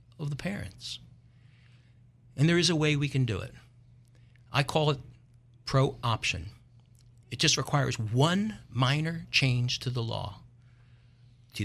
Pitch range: 120-140 Hz